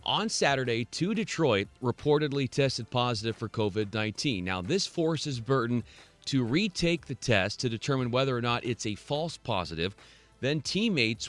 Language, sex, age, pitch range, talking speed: English, male, 30-49, 115-150 Hz, 155 wpm